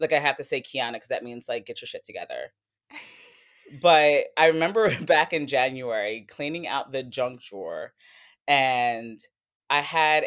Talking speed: 165 wpm